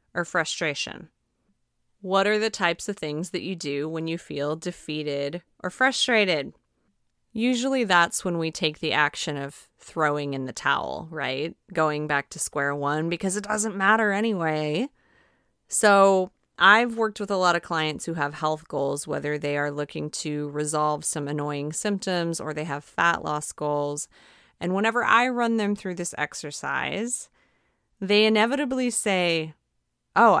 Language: English